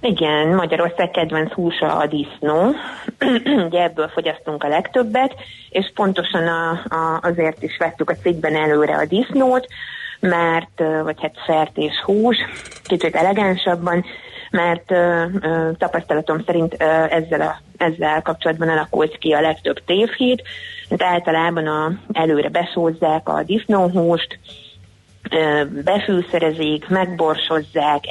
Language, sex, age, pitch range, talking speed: Hungarian, female, 30-49, 155-180 Hz, 115 wpm